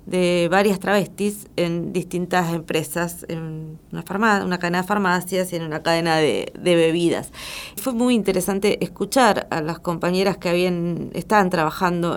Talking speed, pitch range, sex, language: 145 wpm, 170-195 Hz, female, Spanish